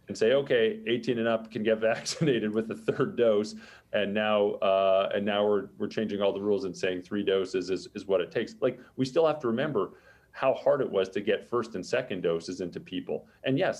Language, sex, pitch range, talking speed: English, male, 100-130 Hz, 230 wpm